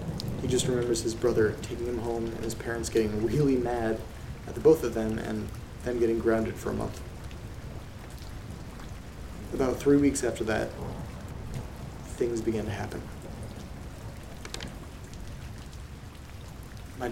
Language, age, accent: English, 30-49, American